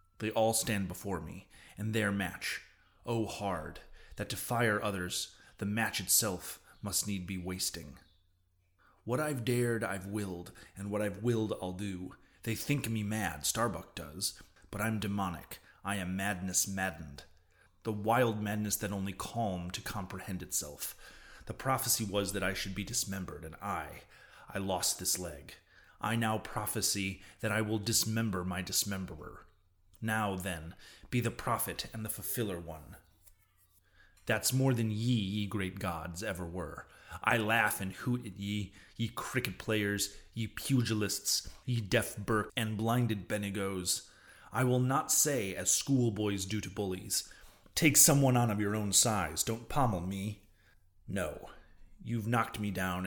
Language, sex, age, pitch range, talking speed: English, male, 30-49, 90-110 Hz, 155 wpm